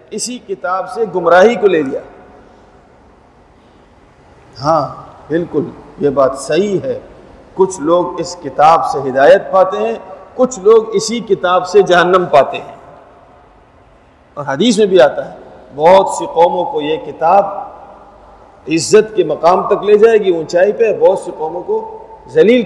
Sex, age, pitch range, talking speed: male, 50-69, 175-260 Hz, 145 wpm